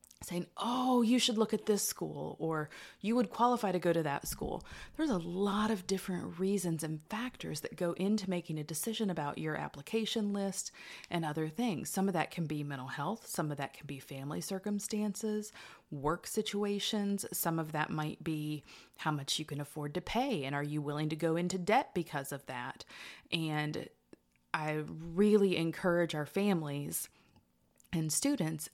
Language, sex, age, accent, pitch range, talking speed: English, female, 30-49, American, 150-195 Hz, 180 wpm